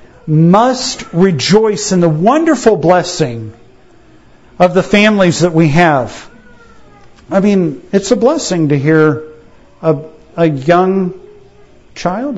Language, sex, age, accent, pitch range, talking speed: English, male, 50-69, American, 165-220 Hz, 110 wpm